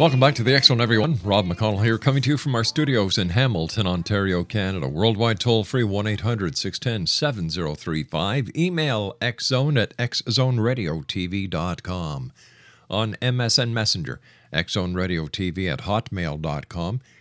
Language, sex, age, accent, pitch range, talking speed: English, male, 50-69, American, 90-125 Hz, 115 wpm